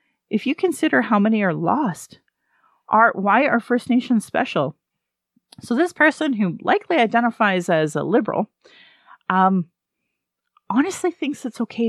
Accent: American